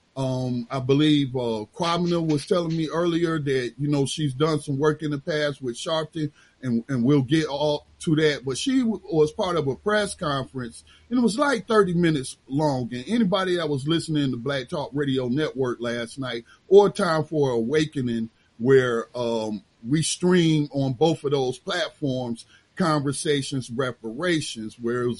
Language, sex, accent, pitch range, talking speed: English, male, American, 130-170 Hz, 175 wpm